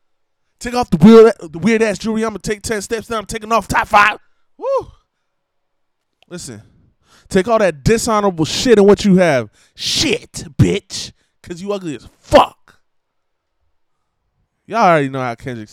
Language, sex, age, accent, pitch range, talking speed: English, male, 20-39, American, 135-195 Hz, 155 wpm